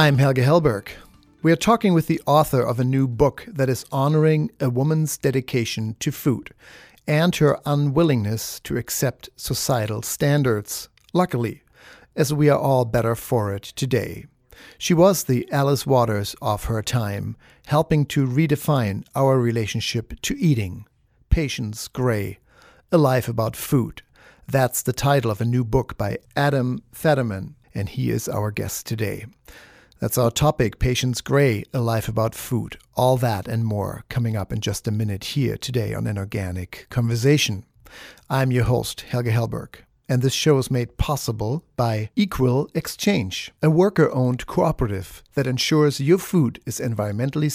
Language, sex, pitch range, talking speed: English, male, 115-145 Hz, 155 wpm